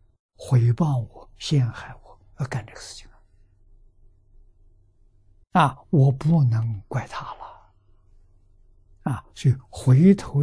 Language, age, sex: Chinese, 60-79, male